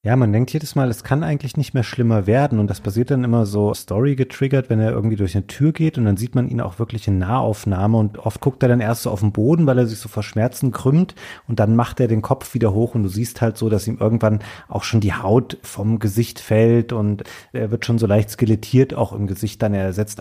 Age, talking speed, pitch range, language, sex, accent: 30-49, 265 wpm, 100-120 Hz, German, male, German